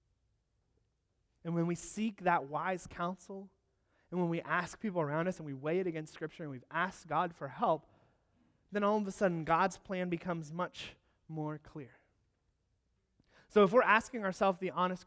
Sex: male